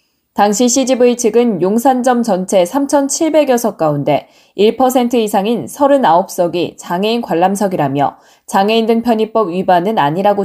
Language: Korean